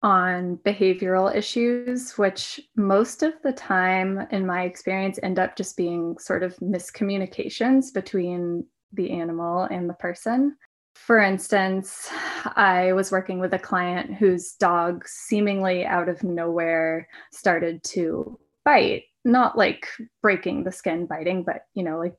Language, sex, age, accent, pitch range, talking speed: English, female, 20-39, American, 180-205 Hz, 140 wpm